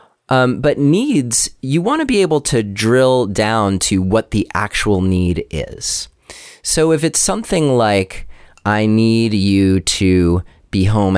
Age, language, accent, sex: 30-49, English, American, male